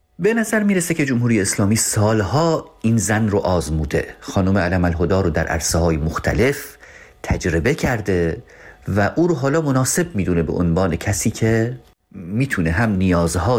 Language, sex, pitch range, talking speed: Persian, male, 85-125 Hz, 145 wpm